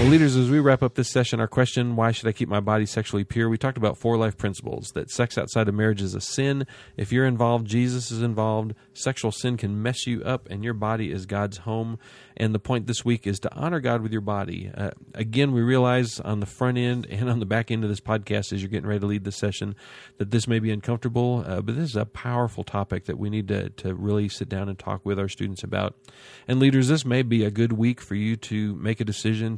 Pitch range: 100-120 Hz